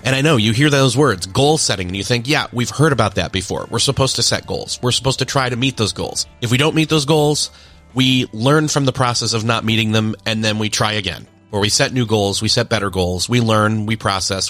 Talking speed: 265 wpm